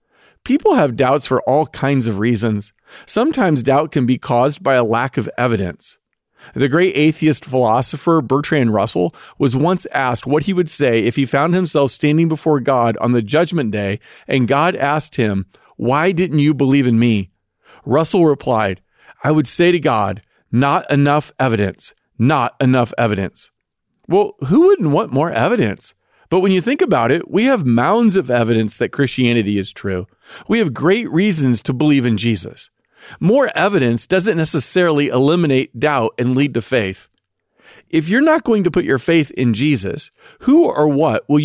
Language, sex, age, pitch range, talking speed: English, male, 40-59, 120-160 Hz, 170 wpm